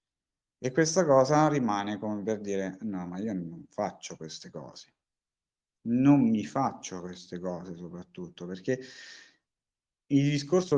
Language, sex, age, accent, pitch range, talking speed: Italian, male, 50-69, native, 95-125 Hz, 130 wpm